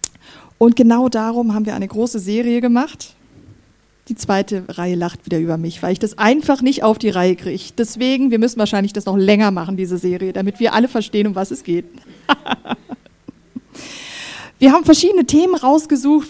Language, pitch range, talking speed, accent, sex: German, 205-270 Hz, 175 wpm, German, female